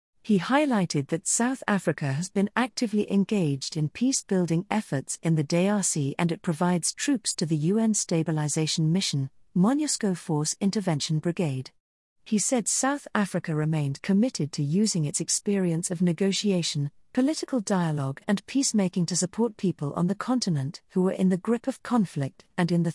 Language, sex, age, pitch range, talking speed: English, female, 40-59, 155-215 Hz, 155 wpm